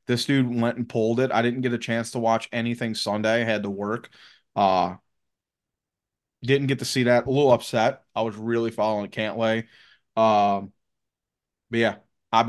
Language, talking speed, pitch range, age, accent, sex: English, 180 wpm, 115-140 Hz, 20-39, American, male